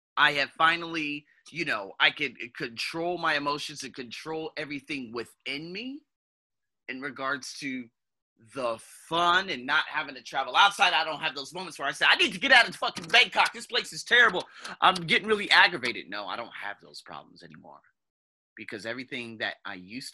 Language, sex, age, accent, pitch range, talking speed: English, male, 30-49, American, 105-150 Hz, 185 wpm